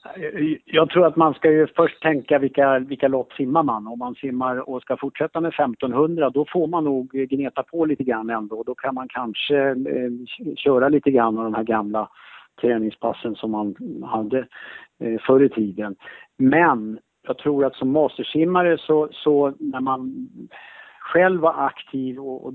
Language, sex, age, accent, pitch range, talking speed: Swedish, male, 50-69, Norwegian, 125-155 Hz, 165 wpm